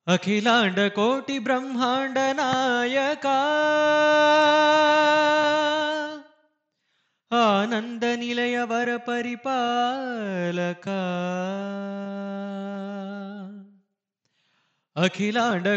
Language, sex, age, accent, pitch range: Telugu, male, 20-39, native, 205-290 Hz